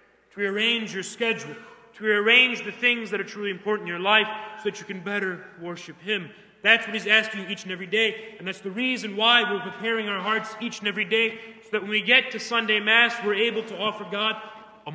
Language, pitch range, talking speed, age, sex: English, 185-225 Hz, 235 wpm, 30-49, male